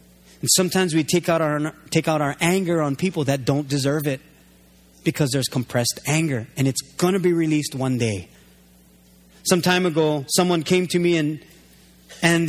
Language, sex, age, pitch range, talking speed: English, male, 30-49, 130-175 Hz, 175 wpm